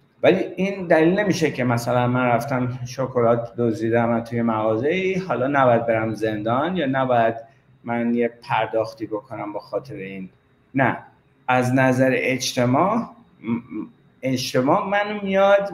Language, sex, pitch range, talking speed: Persian, male, 115-160 Hz, 130 wpm